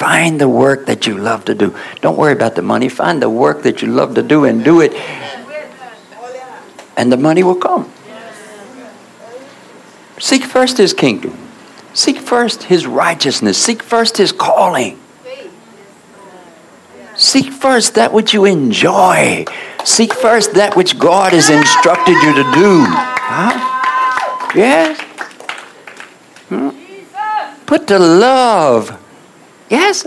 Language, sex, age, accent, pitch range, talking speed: English, male, 60-79, American, 195-300 Hz, 125 wpm